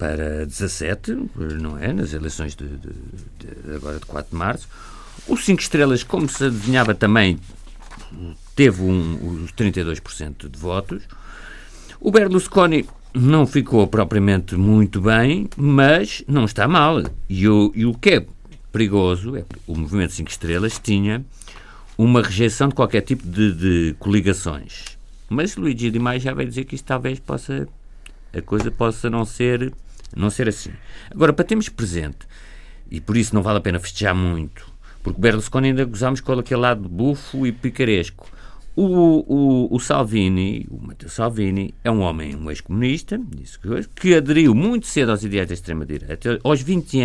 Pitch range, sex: 90-130 Hz, male